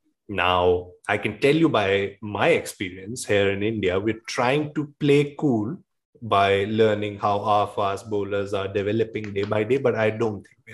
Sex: male